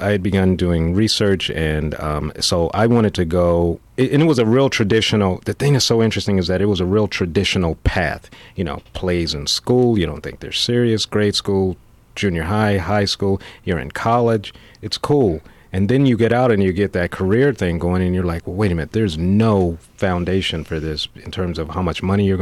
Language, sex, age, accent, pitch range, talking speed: English, male, 30-49, American, 85-105 Hz, 220 wpm